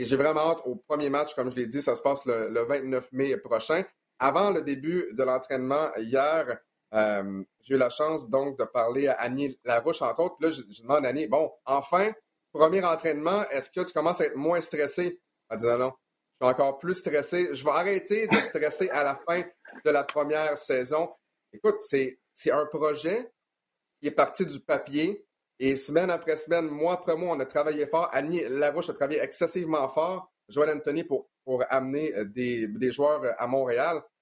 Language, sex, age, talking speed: French, male, 30-49, 200 wpm